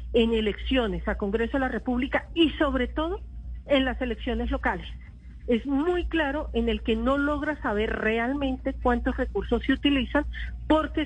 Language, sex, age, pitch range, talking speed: Spanish, female, 50-69, 195-255 Hz, 155 wpm